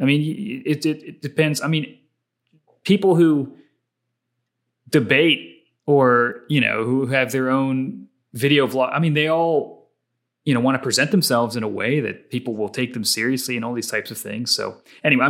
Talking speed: 185 wpm